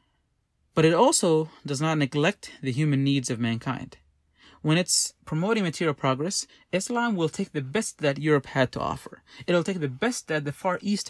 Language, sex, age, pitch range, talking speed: English, male, 30-49, 130-175 Hz, 185 wpm